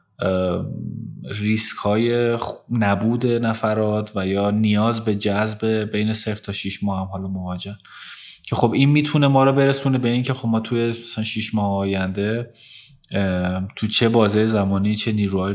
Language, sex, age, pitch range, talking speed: English, male, 20-39, 100-120 Hz, 145 wpm